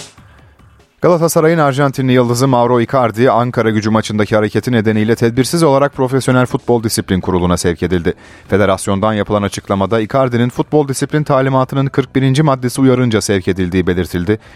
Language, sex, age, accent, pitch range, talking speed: Turkish, male, 30-49, native, 100-130 Hz, 130 wpm